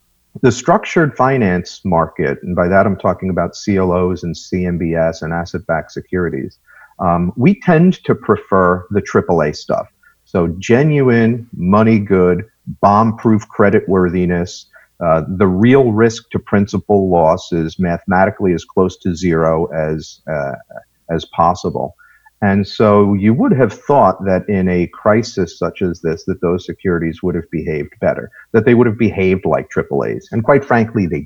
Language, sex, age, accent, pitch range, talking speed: English, male, 50-69, American, 85-110 Hz, 155 wpm